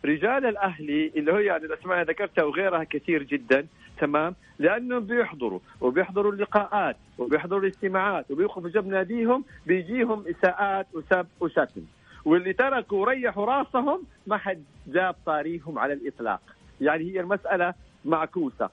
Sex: male